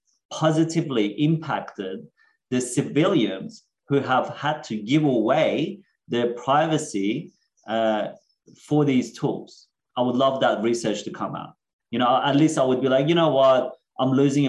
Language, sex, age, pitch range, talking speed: English, male, 30-49, 110-140 Hz, 155 wpm